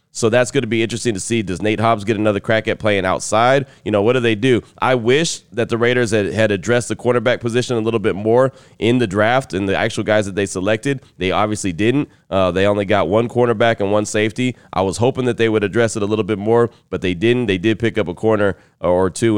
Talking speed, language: 255 wpm, English